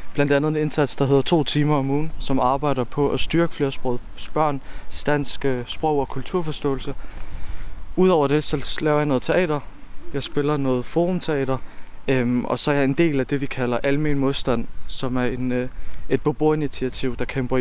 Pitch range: 125-150 Hz